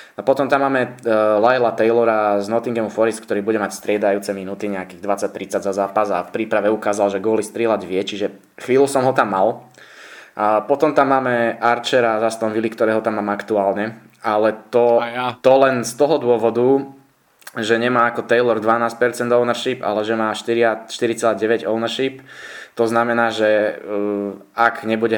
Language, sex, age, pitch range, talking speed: Slovak, male, 20-39, 105-120 Hz, 160 wpm